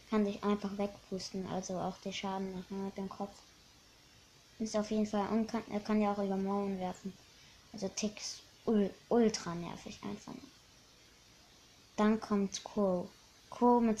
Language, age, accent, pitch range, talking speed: German, 20-39, German, 205-225 Hz, 160 wpm